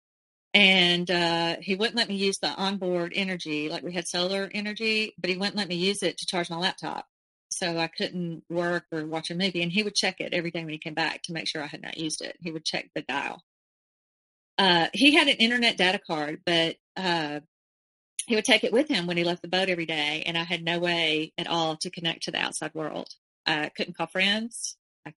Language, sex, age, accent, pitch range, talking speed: English, female, 30-49, American, 165-200 Hz, 235 wpm